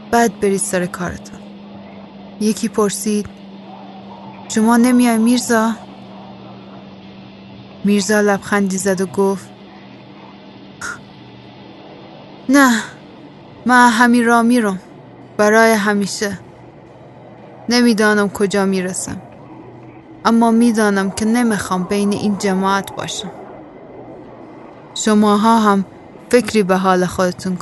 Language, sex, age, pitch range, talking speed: Persian, female, 30-49, 185-210 Hz, 85 wpm